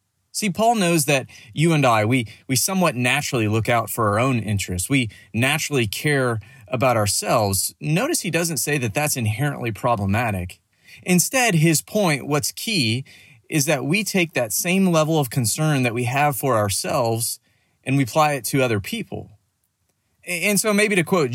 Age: 30-49